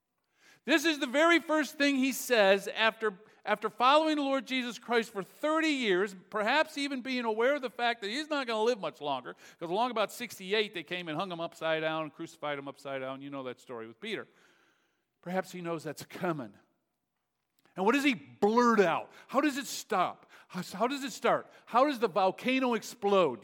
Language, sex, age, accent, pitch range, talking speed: English, male, 50-69, American, 145-225 Hz, 200 wpm